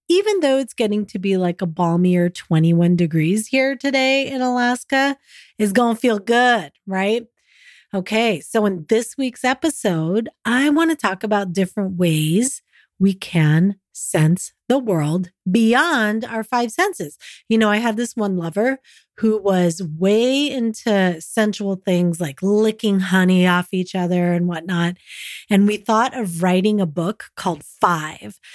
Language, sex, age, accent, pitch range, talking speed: English, female, 30-49, American, 185-250 Hz, 150 wpm